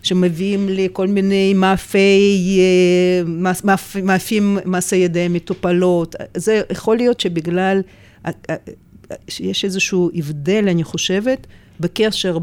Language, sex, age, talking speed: English, female, 50-69, 105 wpm